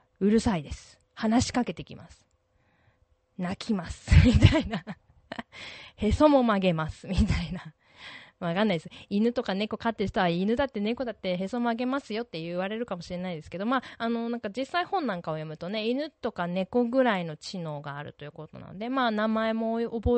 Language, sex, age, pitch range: Japanese, female, 20-39, 165-235 Hz